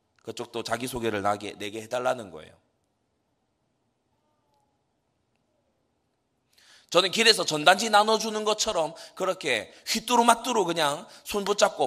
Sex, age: male, 30-49